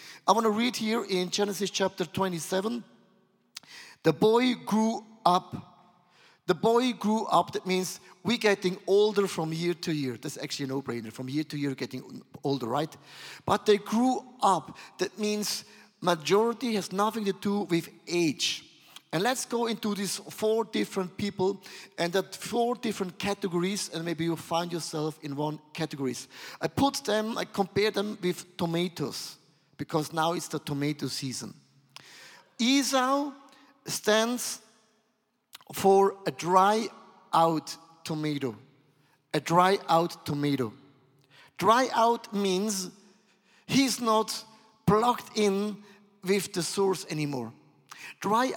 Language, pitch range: English, 155-215 Hz